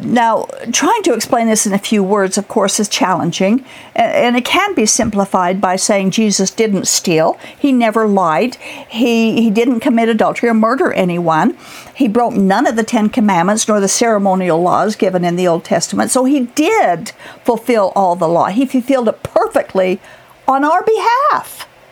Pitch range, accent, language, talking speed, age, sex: 205-270 Hz, American, English, 175 wpm, 50-69, female